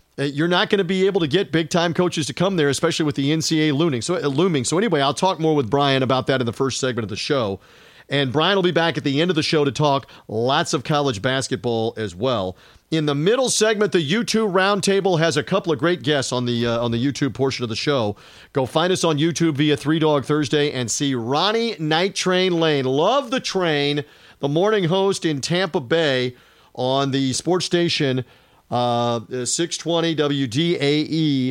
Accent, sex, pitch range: American, male, 130-165 Hz